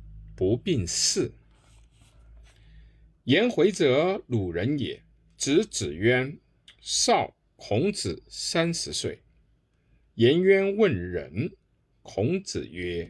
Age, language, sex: 50-69, Chinese, male